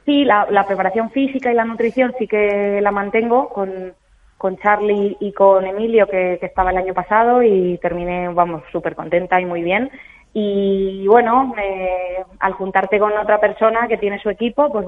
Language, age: Spanish, 20-39